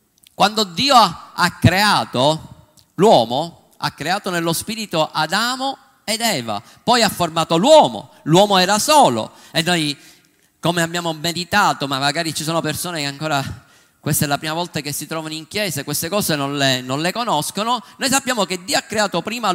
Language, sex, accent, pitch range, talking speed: Italian, male, native, 170-250 Hz, 170 wpm